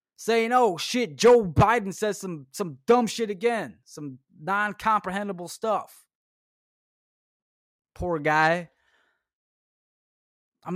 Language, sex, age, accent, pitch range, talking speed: English, male, 20-39, American, 140-200 Hz, 95 wpm